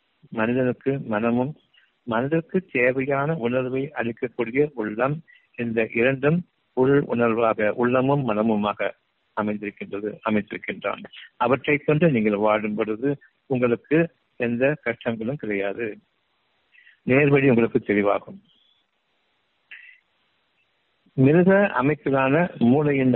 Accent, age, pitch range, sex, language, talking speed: native, 60-79, 110-145 Hz, male, Tamil, 75 wpm